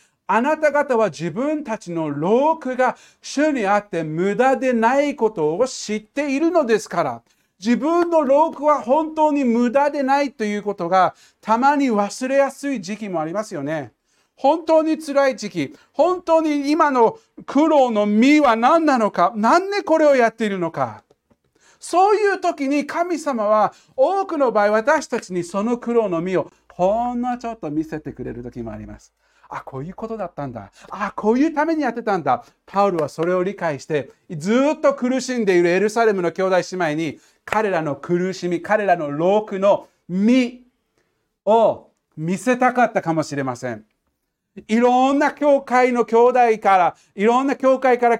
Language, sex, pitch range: Japanese, male, 185-275 Hz